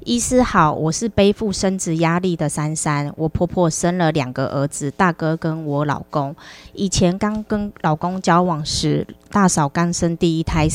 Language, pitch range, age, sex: Chinese, 150-180 Hz, 20-39, female